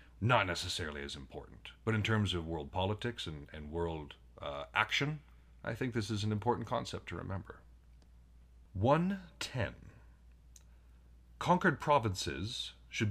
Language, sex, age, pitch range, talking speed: English, male, 40-59, 70-115 Hz, 135 wpm